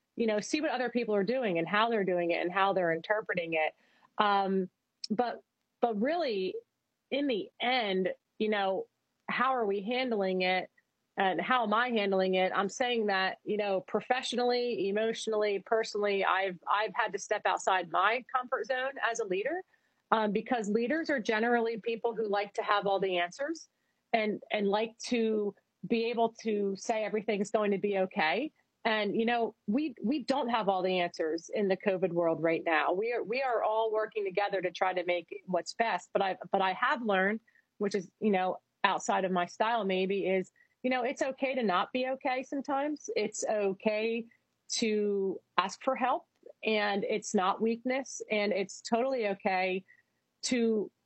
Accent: American